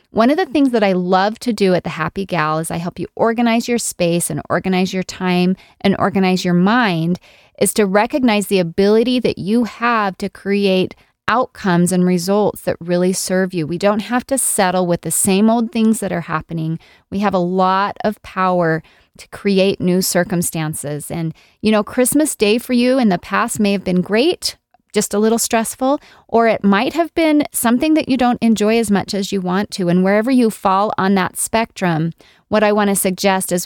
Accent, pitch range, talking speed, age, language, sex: American, 180-220 Hz, 205 wpm, 30-49, English, female